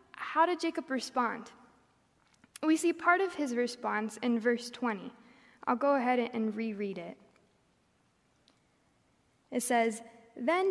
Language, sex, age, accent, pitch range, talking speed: English, female, 20-39, American, 205-255 Hz, 125 wpm